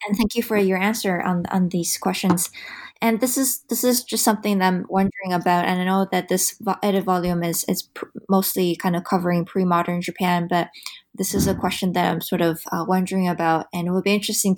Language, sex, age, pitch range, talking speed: English, female, 20-39, 175-195 Hz, 220 wpm